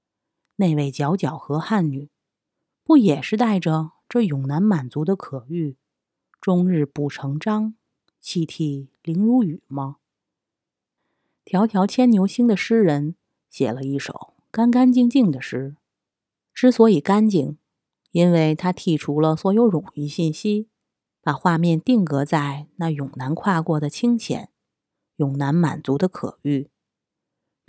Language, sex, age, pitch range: Chinese, female, 30-49, 145-210 Hz